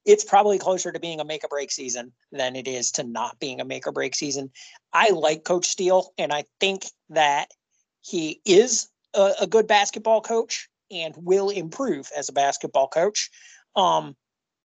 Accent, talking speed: American, 180 wpm